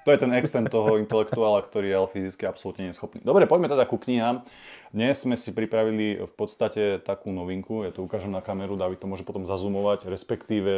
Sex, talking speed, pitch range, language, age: male, 205 wpm, 95-105 Hz, Slovak, 30-49